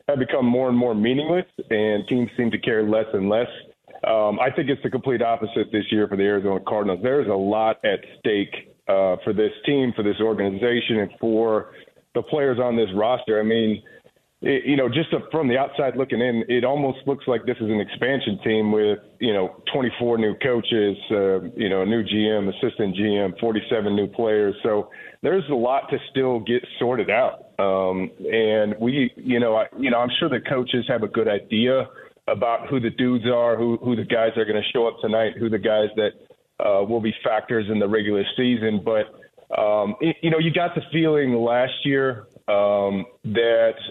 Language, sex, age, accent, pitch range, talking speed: English, male, 30-49, American, 105-125 Hz, 200 wpm